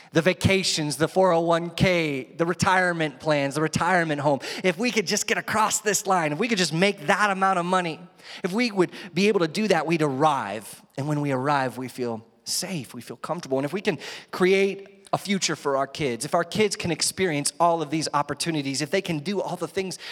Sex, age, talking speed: male, 30-49, 220 wpm